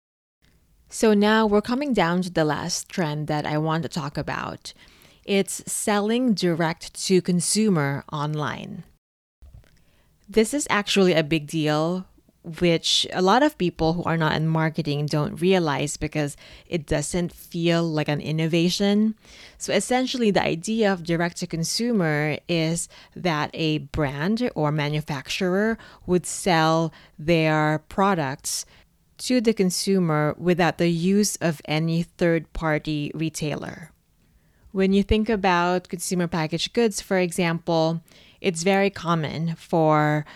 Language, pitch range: English, 155-195 Hz